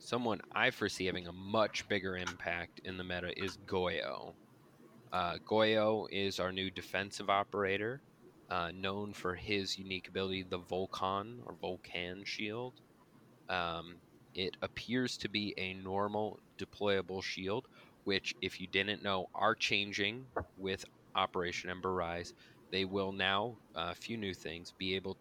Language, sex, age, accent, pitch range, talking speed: English, male, 20-39, American, 90-110 Hz, 145 wpm